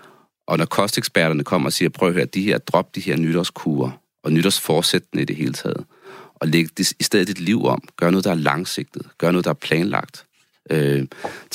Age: 30-49